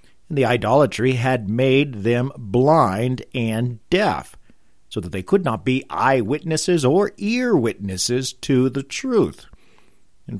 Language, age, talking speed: English, 50-69, 125 wpm